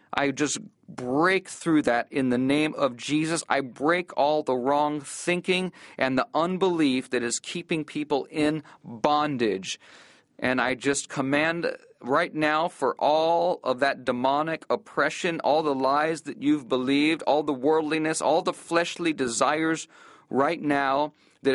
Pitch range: 140-165 Hz